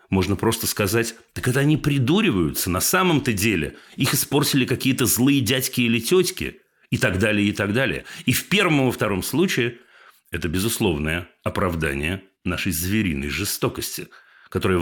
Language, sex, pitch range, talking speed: Russian, male, 100-150 Hz, 145 wpm